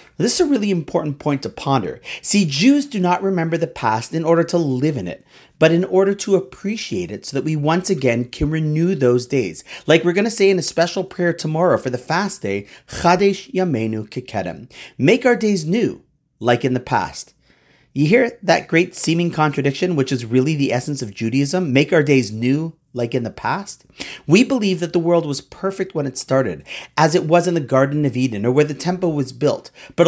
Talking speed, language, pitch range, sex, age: 210 wpm, English, 135-190 Hz, male, 30-49